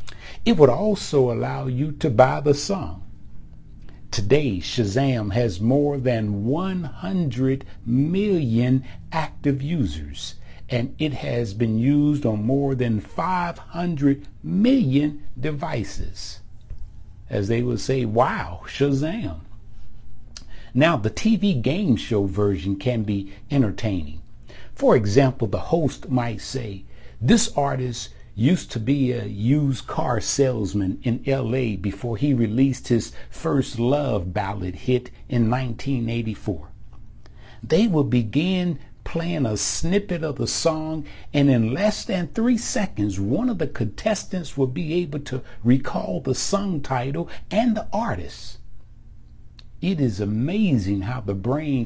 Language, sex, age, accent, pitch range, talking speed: English, male, 60-79, American, 105-145 Hz, 125 wpm